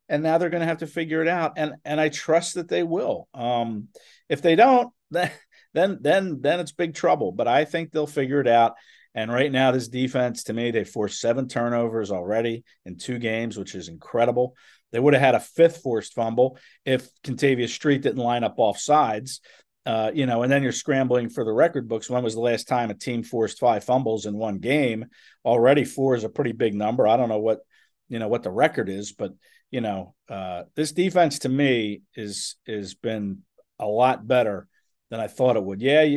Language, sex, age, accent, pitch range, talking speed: English, male, 50-69, American, 115-145 Hz, 215 wpm